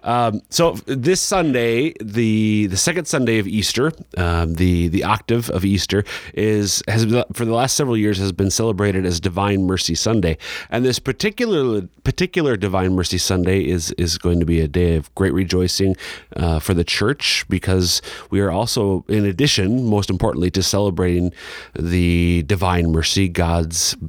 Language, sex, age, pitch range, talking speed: English, male, 30-49, 85-105 Hz, 165 wpm